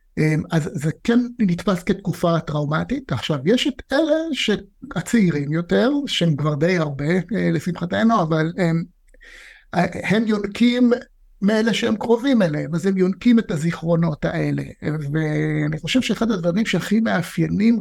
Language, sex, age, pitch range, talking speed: Hebrew, male, 60-79, 155-195 Hz, 125 wpm